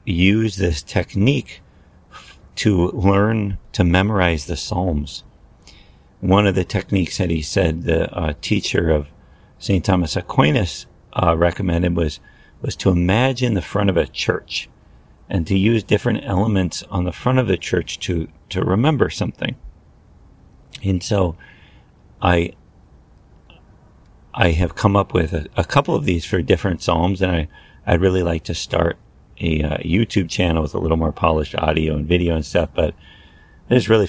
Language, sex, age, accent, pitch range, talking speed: English, male, 50-69, American, 80-100 Hz, 160 wpm